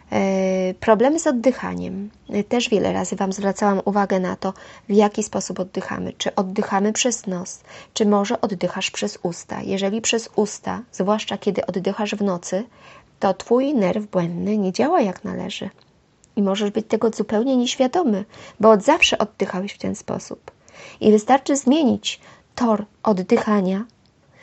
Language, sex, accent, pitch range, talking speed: English, female, Polish, 190-225 Hz, 140 wpm